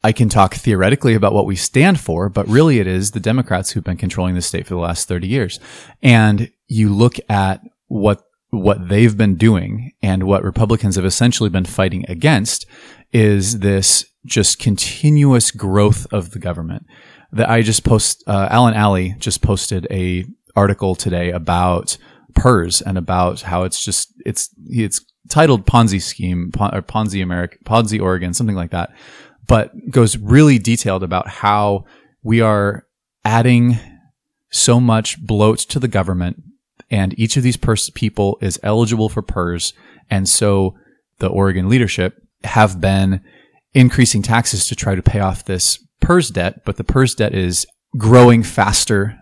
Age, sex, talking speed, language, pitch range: 30-49, male, 160 wpm, English, 95-115 Hz